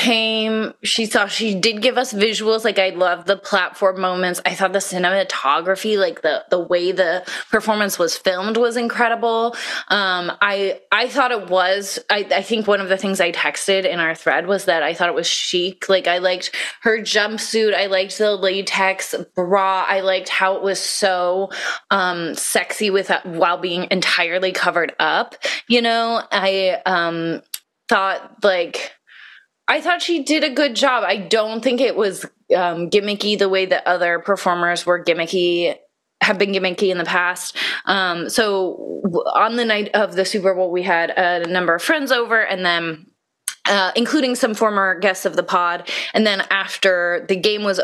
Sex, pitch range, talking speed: female, 180-215 Hz, 180 wpm